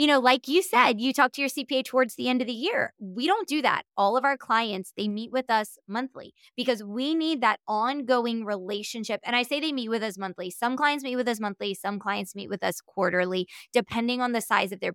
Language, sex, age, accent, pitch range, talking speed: English, female, 20-39, American, 210-260 Hz, 245 wpm